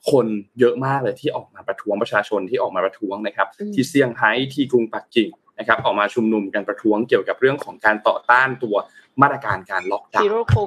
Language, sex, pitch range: Thai, male, 115-150 Hz